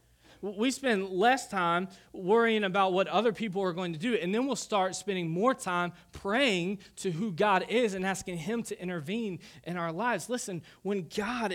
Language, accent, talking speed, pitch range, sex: English, American, 185 wpm, 120-190 Hz, male